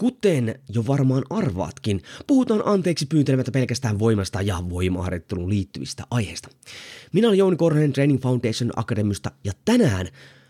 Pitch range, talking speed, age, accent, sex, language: 115-165 Hz, 125 wpm, 20-39, native, male, Finnish